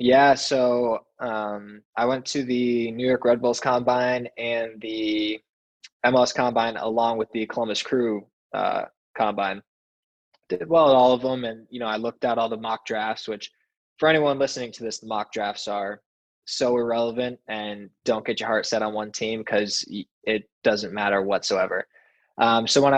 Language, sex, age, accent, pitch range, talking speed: English, male, 20-39, American, 105-125 Hz, 180 wpm